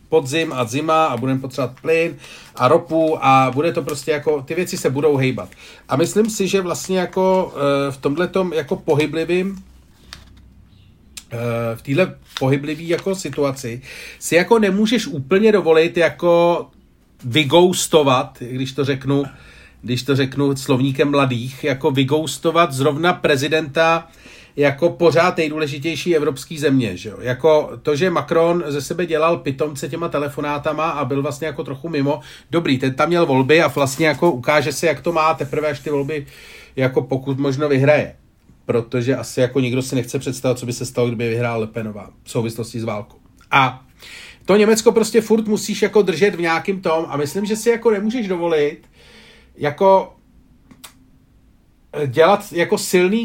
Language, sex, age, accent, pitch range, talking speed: Czech, male, 40-59, native, 135-175 Hz, 160 wpm